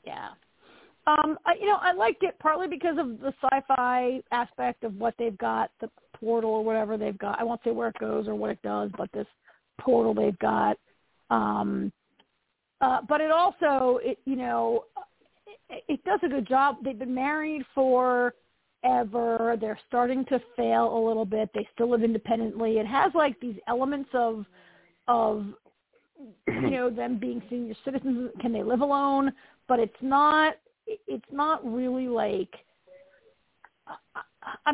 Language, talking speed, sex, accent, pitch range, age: English, 160 wpm, female, American, 230-275 Hz, 40-59